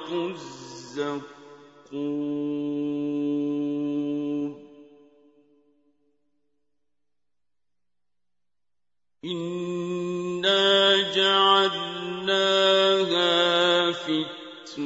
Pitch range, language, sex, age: 145-195 Hz, Arabic, male, 50-69